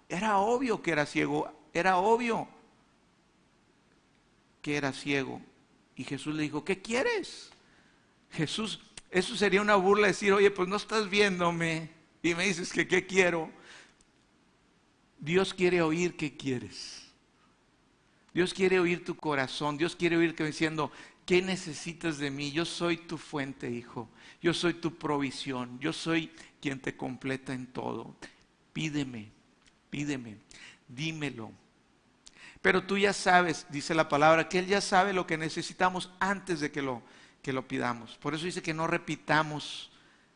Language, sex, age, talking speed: Spanish, male, 50-69, 145 wpm